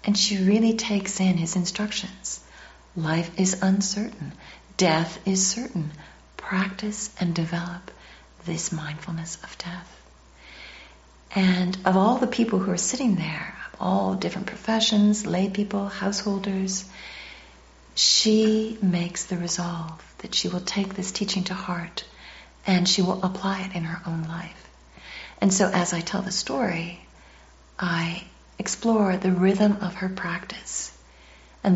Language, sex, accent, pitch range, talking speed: English, female, American, 165-195 Hz, 135 wpm